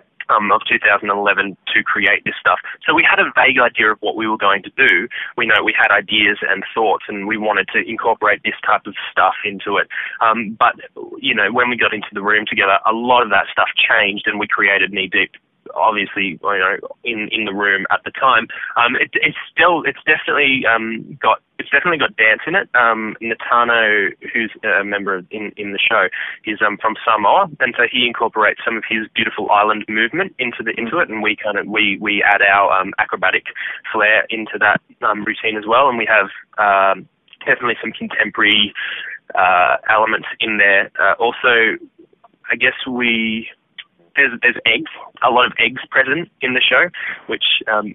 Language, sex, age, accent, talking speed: English, male, 20-39, Australian, 195 wpm